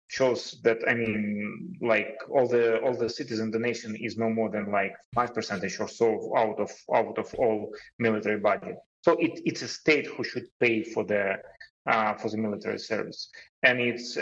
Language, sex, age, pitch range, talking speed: Russian, male, 30-49, 115-135 Hz, 195 wpm